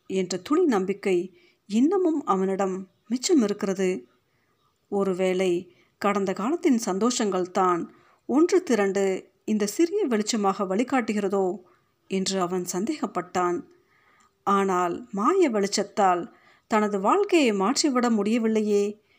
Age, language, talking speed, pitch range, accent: 50-69, Tamil, 80 wpm, 190-255 Hz, native